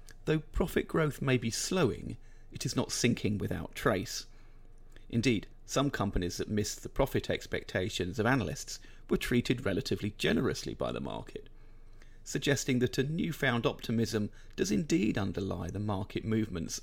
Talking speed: 145 wpm